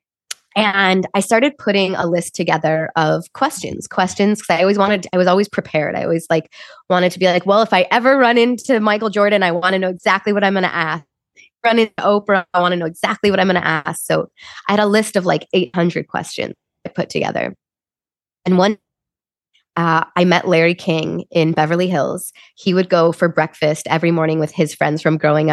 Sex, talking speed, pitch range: female, 210 wpm, 165-205 Hz